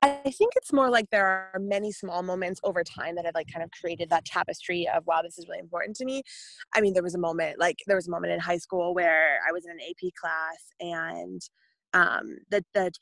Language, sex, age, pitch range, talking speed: English, female, 20-39, 170-205 Hz, 245 wpm